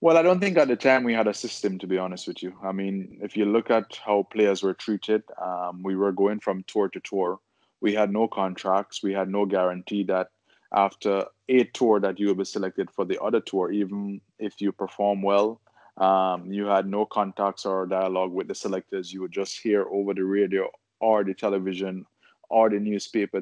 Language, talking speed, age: English, 215 wpm, 20-39